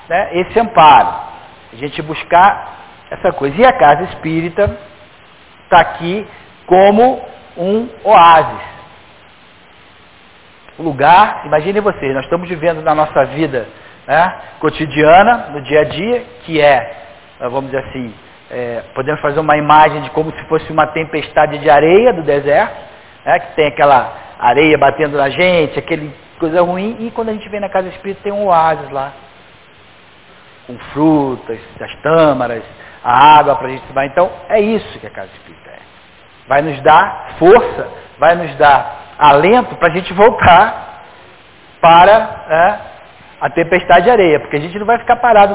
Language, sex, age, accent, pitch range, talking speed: Portuguese, male, 50-69, Brazilian, 145-200 Hz, 155 wpm